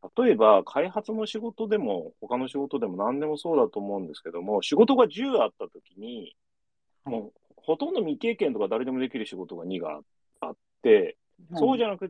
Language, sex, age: Japanese, male, 40-59